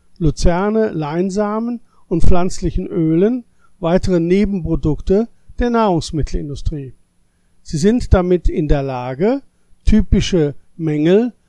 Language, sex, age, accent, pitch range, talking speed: German, male, 50-69, German, 145-200 Hz, 90 wpm